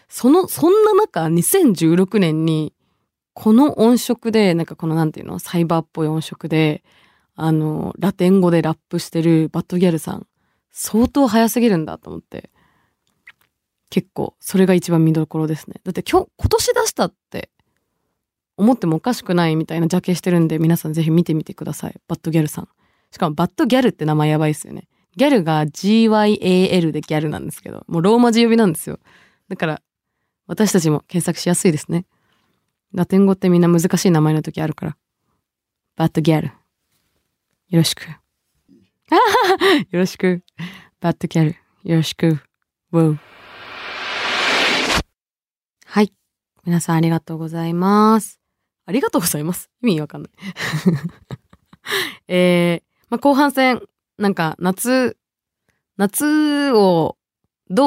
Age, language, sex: 20-39, Japanese, female